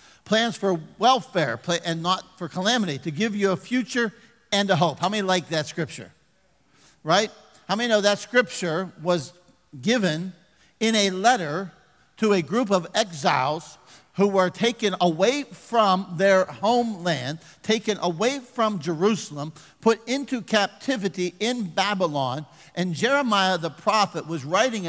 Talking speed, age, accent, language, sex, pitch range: 140 wpm, 50-69, American, English, male, 170-220 Hz